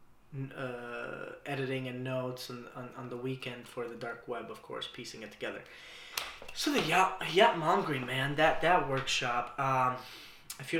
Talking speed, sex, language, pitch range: 170 wpm, male, English, 115-135 Hz